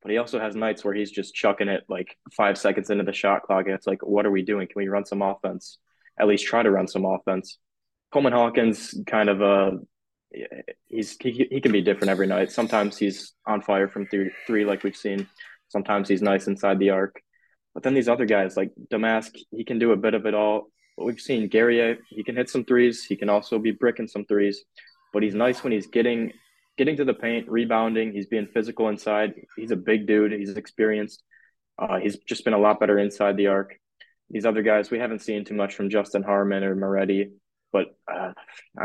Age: 20-39